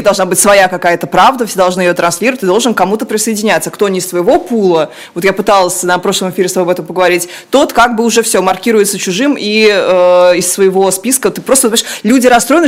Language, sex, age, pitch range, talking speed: Russian, female, 20-39, 185-230 Hz, 220 wpm